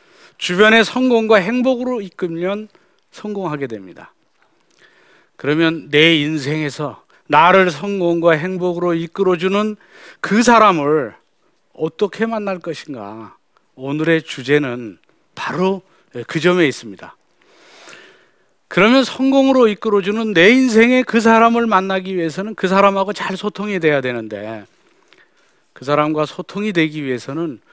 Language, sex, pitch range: Korean, male, 135-195 Hz